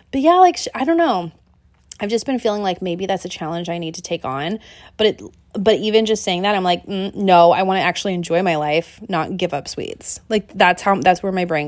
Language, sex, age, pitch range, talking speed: English, female, 20-39, 170-230 Hz, 250 wpm